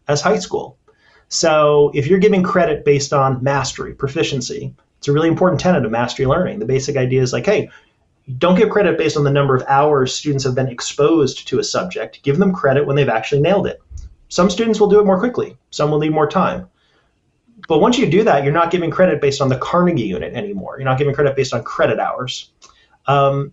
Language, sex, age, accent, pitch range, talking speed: English, male, 30-49, American, 140-180 Hz, 215 wpm